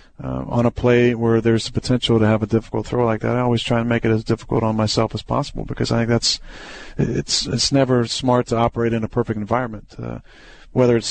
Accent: American